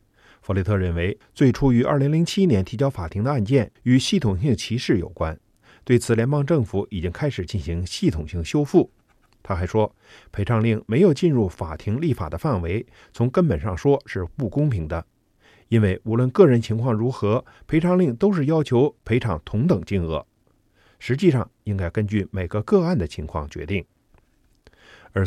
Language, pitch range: Chinese, 100-135 Hz